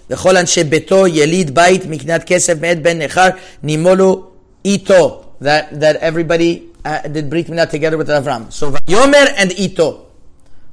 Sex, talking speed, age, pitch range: male, 85 wpm, 30-49, 135-165 Hz